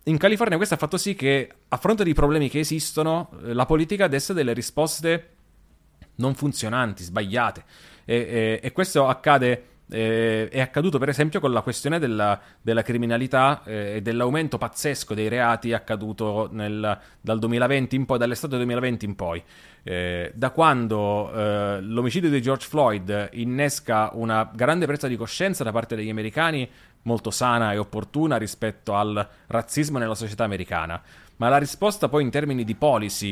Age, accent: 30-49, native